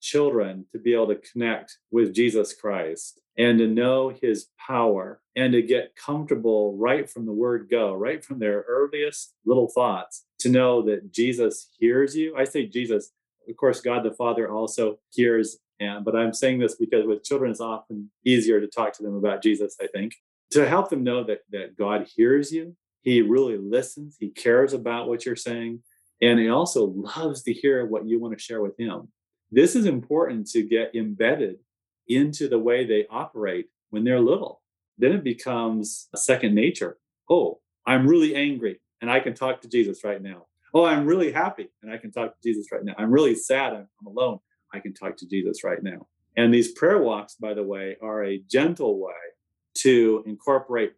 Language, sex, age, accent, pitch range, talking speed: English, male, 40-59, American, 110-145 Hz, 195 wpm